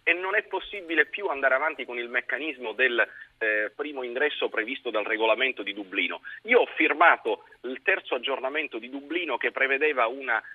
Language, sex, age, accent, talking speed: Italian, male, 30-49, native, 170 wpm